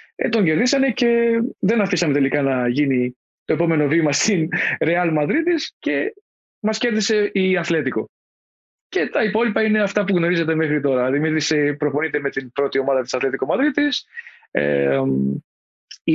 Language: Greek